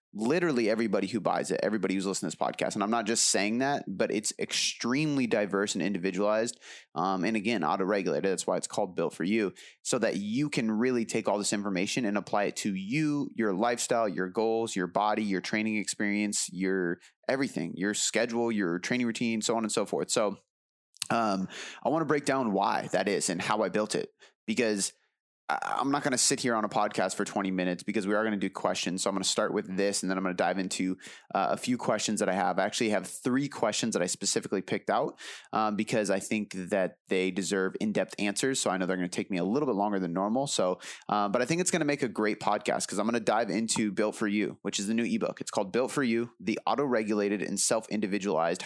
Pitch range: 95-115 Hz